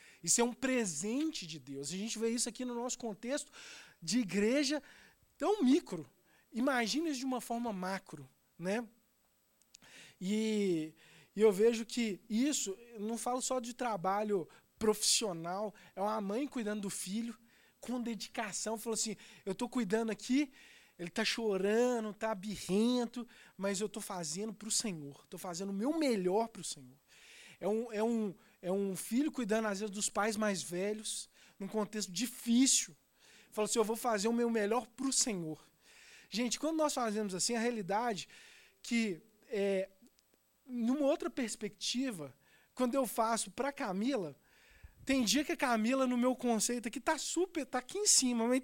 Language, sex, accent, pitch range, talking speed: Portuguese, male, Brazilian, 205-255 Hz, 165 wpm